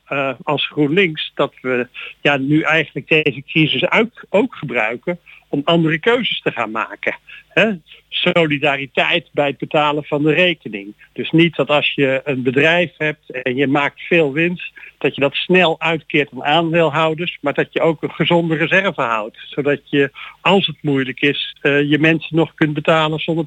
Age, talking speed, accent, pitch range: 50-69, 170 wpm, Dutch, 145-175 Hz